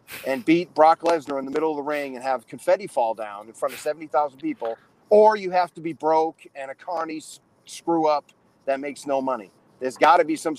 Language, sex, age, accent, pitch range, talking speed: English, male, 40-59, American, 130-170 Hz, 230 wpm